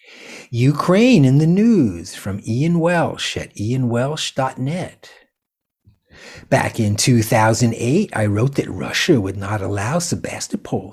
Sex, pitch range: male, 110-145 Hz